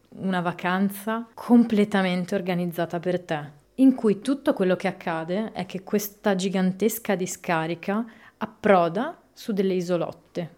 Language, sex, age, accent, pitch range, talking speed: Italian, female, 20-39, native, 165-195 Hz, 120 wpm